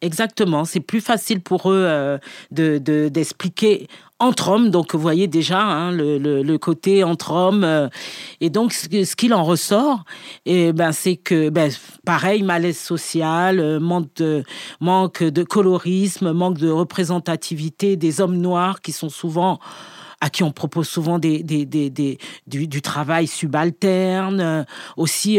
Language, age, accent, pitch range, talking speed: French, 40-59, French, 155-185 Hz, 155 wpm